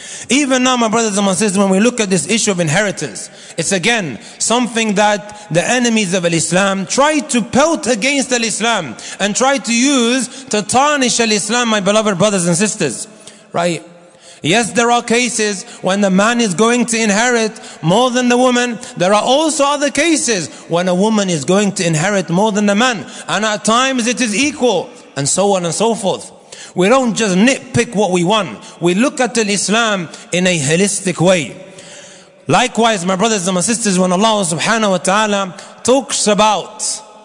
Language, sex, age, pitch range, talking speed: English, male, 30-49, 185-230 Hz, 180 wpm